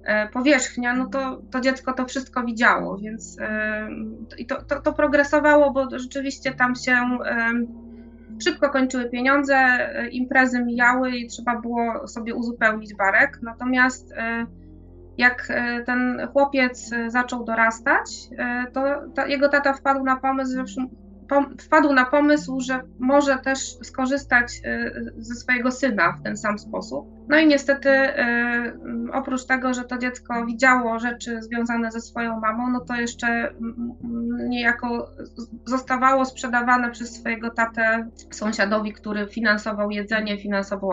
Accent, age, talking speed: native, 20-39, 115 wpm